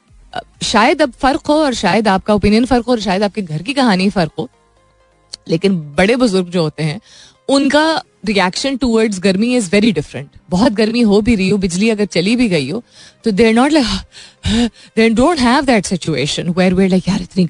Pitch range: 160-225 Hz